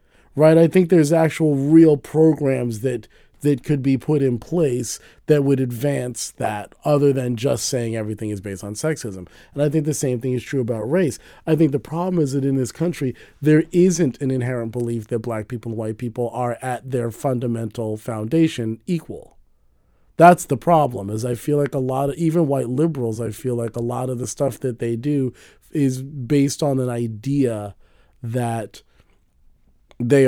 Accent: American